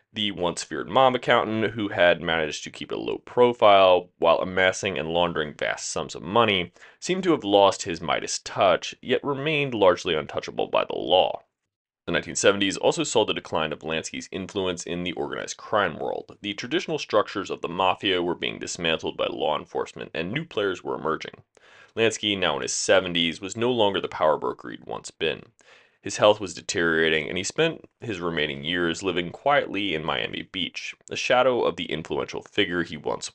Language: English